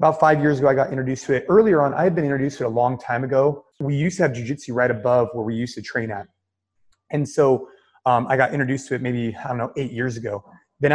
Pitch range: 115-140 Hz